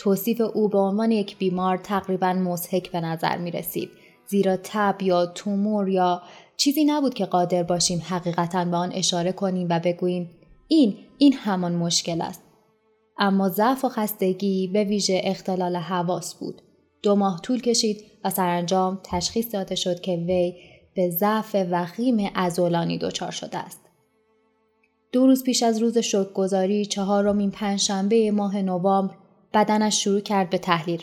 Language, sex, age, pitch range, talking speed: Persian, female, 20-39, 180-215 Hz, 150 wpm